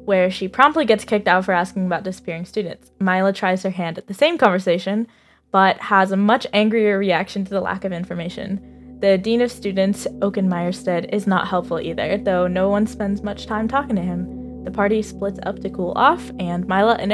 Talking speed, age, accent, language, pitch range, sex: 205 wpm, 10-29, American, English, 185-215 Hz, female